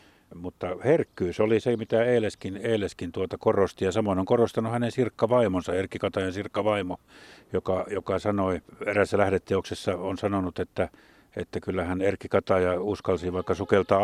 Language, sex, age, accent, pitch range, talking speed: Finnish, male, 50-69, native, 90-105 Hz, 145 wpm